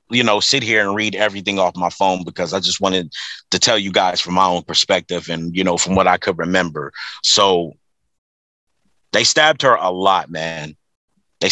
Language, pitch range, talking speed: English, 95-140 Hz, 200 wpm